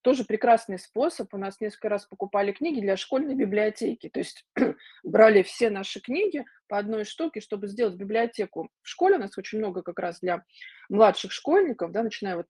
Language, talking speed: Russian, 180 wpm